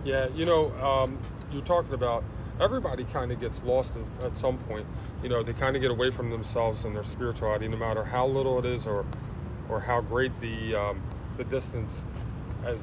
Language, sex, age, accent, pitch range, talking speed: English, male, 30-49, American, 110-125 Hz, 195 wpm